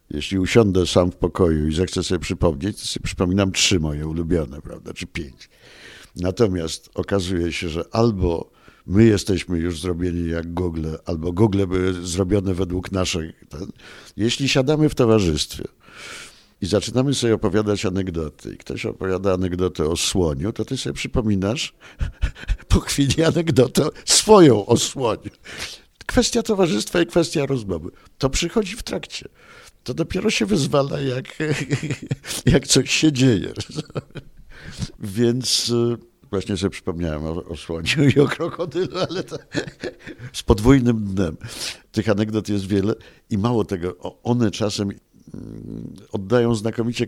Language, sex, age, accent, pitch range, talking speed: Polish, male, 50-69, native, 90-130 Hz, 135 wpm